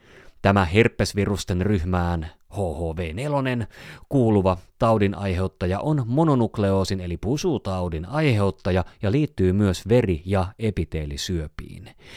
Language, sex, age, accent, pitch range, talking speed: Finnish, male, 30-49, native, 90-125 Hz, 85 wpm